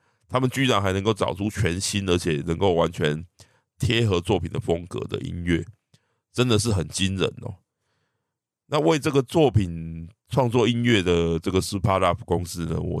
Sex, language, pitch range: male, Chinese, 90-115 Hz